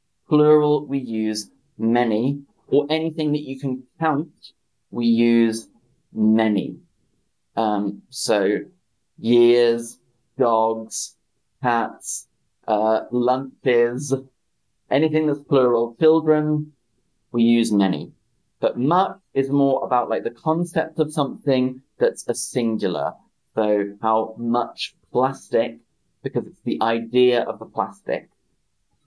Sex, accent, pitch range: male, British, 115-145 Hz